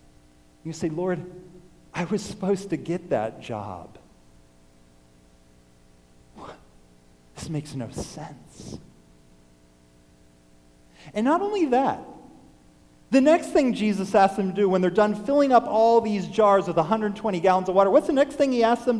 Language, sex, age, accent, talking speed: English, male, 40-59, American, 145 wpm